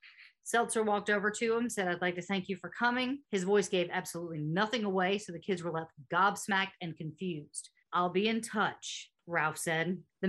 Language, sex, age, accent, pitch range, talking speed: English, female, 40-59, American, 175-215 Hz, 200 wpm